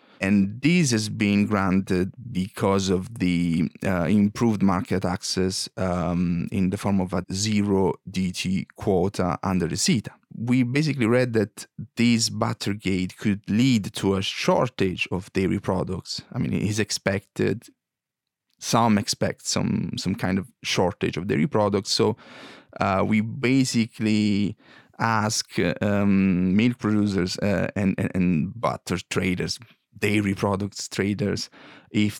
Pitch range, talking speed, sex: 95-110 Hz, 135 wpm, male